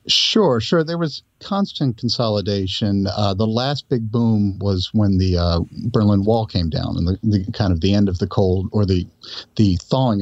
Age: 50-69